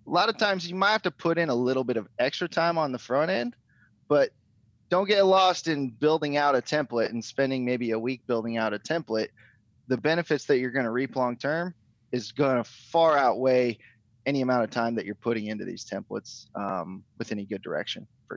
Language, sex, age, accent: English, male, 20-39, American